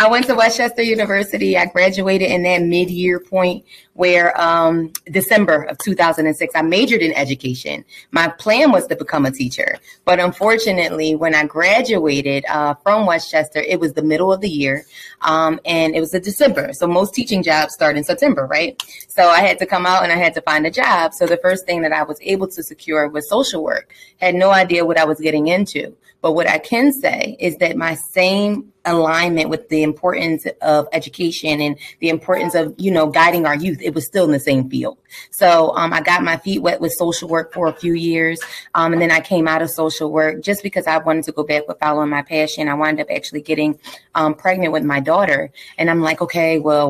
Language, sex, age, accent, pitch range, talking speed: English, female, 20-39, American, 155-185 Hz, 215 wpm